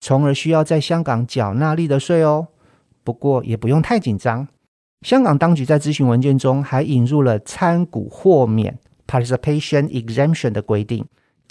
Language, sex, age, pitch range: Chinese, male, 50-69, 120-170 Hz